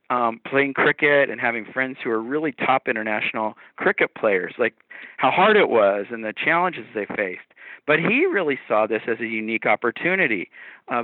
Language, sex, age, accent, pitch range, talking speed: English, male, 40-59, American, 115-145 Hz, 180 wpm